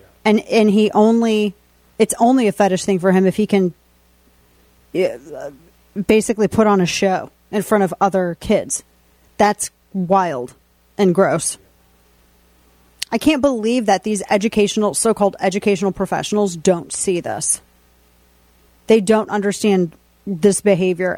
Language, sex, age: English, female, 30-49